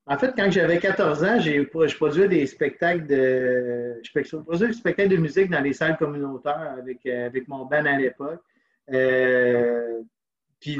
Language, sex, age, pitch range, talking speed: French, male, 30-49, 135-165 Hz, 155 wpm